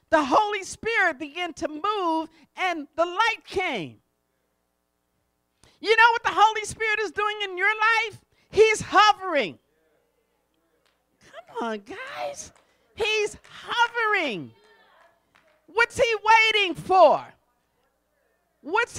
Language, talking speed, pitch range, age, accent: English, 105 wpm, 315-425 Hz, 50-69, American